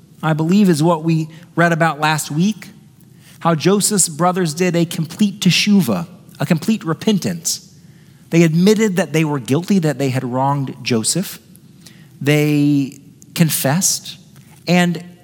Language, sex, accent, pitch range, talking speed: English, male, American, 145-180 Hz, 130 wpm